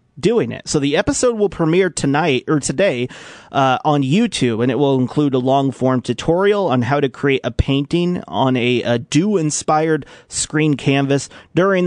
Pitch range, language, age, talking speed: 125-165 Hz, English, 30-49, 175 wpm